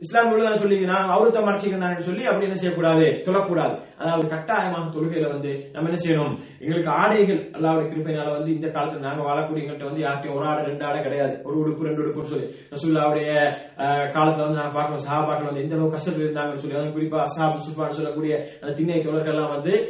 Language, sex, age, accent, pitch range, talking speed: English, male, 20-39, Indian, 150-205 Hz, 55 wpm